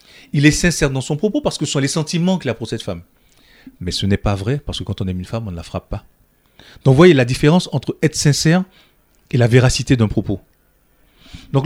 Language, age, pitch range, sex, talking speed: French, 40-59, 105-145 Hz, male, 245 wpm